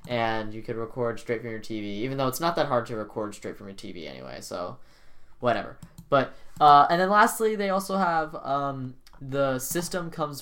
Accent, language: American, English